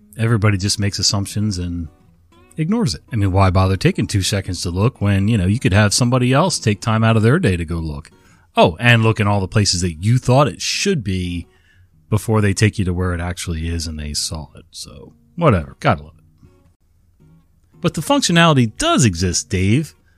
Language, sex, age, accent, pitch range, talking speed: English, male, 30-49, American, 90-130 Hz, 210 wpm